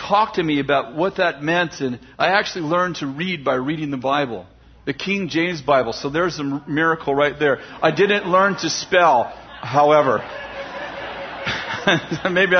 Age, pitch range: 40-59, 140-175 Hz